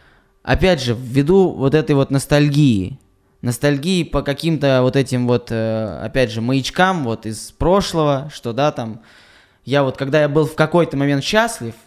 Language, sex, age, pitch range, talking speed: Russian, male, 20-39, 125-155 Hz, 155 wpm